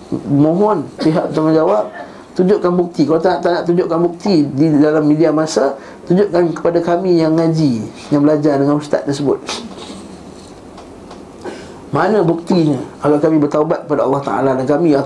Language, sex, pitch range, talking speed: Malay, male, 130-170 Hz, 145 wpm